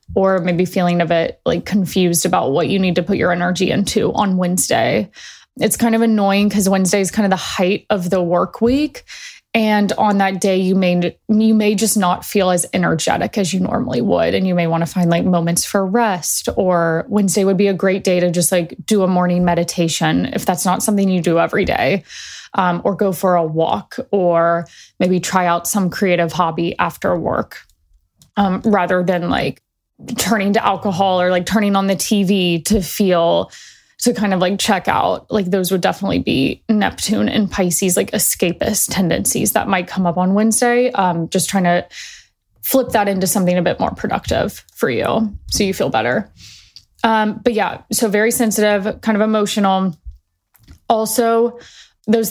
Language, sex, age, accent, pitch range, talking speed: English, female, 20-39, American, 180-215 Hz, 190 wpm